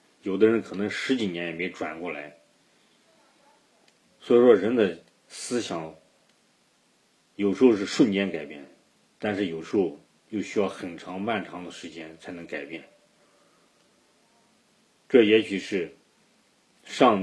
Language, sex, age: Chinese, male, 40-59